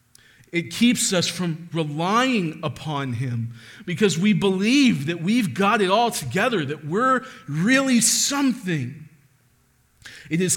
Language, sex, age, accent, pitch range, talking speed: English, male, 40-59, American, 140-190 Hz, 125 wpm